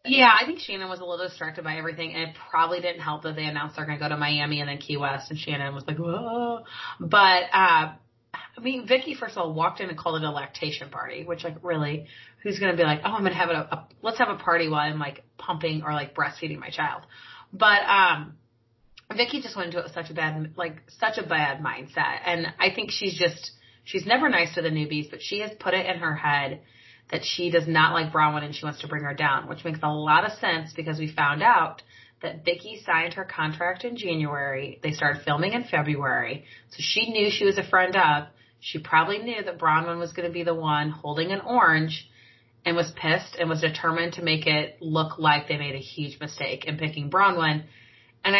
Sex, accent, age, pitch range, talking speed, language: female, American, 30-49, 150-185 Hz, 235 wpm, English